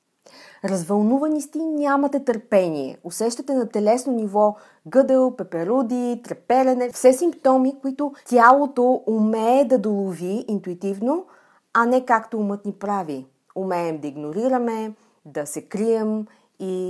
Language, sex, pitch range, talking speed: Bulgarian, female, 165-230 Hz, 115 wpm